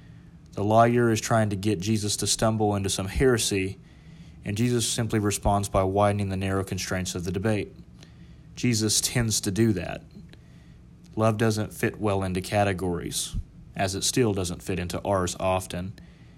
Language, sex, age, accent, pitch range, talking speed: English, male, 30-49, American, 95-110 Hz, 160 wpm